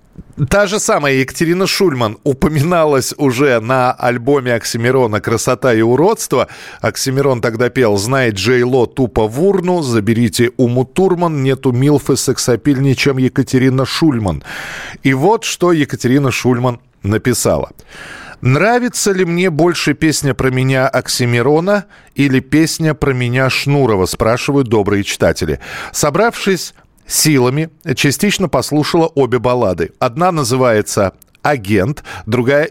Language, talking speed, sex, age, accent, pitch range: Russian, 115 wpm, male, 40-59, native, 125-165 Hz